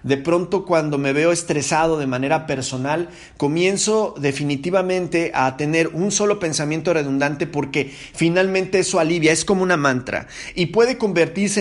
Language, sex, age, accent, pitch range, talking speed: Spanish, male, 40-59, Mexican, 145-185 Hz, 145 wpm